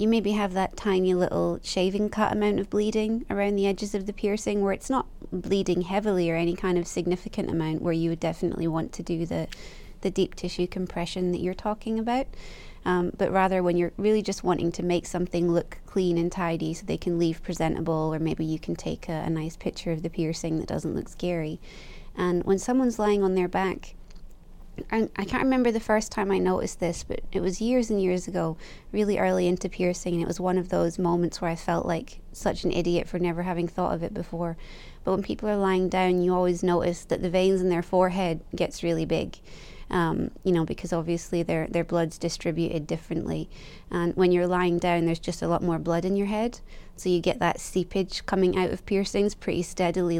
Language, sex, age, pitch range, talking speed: English, female, 20-39, 170-190 Hz, 215 wpm